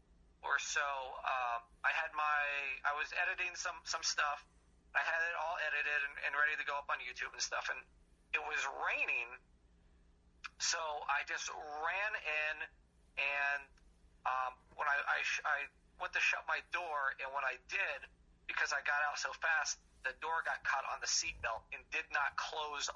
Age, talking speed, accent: 30-49, 180 wpm, American